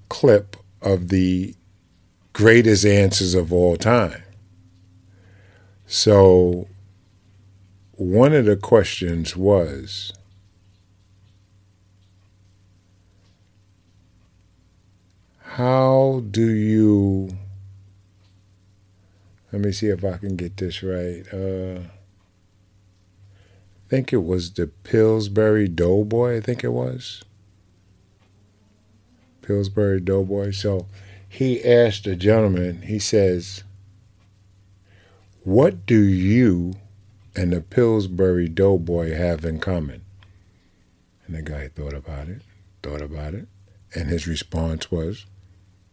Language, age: English, 50-69